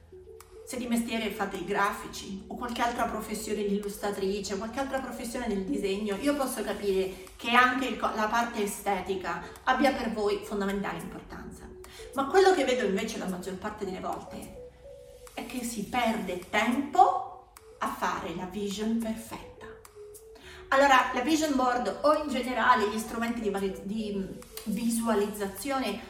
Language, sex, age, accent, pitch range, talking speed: Italian, female, 30-49, native, 200-250 Hz, 145 wpm